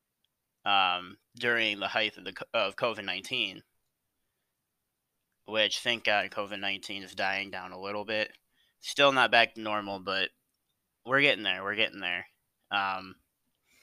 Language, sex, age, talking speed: English, male, 20-39, 135 wpm